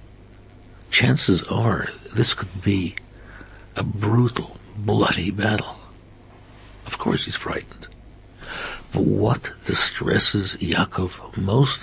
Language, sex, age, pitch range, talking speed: English, male, 60-79, 95-115 Hz, 90 wpm